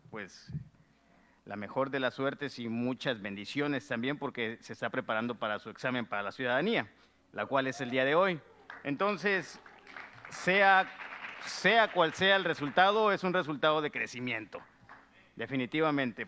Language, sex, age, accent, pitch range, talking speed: English, male, 50-69, Mexican, 130-185 Hz, 145 wpm